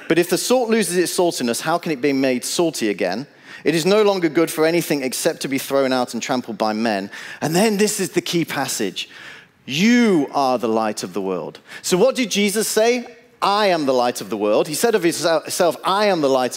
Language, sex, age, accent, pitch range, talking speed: English, male, 40-59, British, 145-210 Hz, 230 wpm